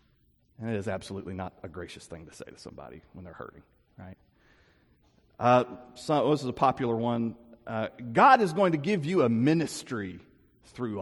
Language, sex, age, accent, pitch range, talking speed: English, male, 40-59, American, 95-145 Hz, 175 wpm